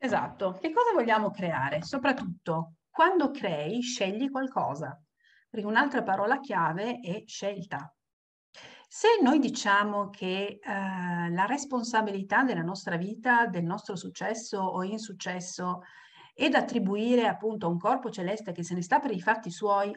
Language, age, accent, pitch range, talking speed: Italian, 40-59, native, 175-255 Hz, 140 wpm